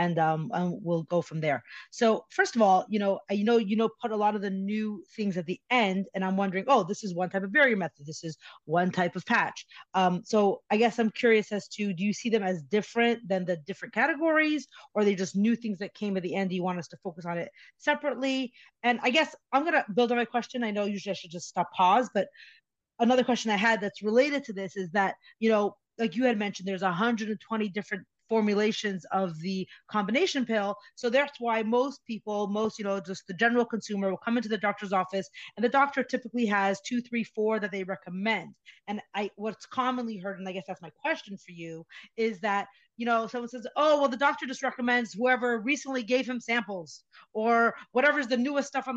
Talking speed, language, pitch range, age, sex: 235 wpm, English, 195-245 Hz, 30-49, female